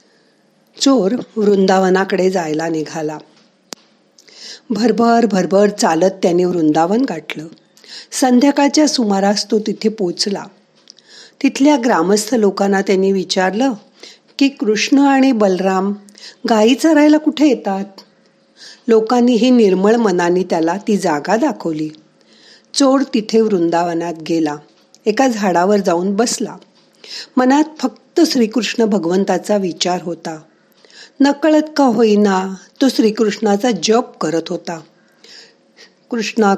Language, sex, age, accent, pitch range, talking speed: Marathi, female, 50-69, native, 180-245 Hz, 95 wpm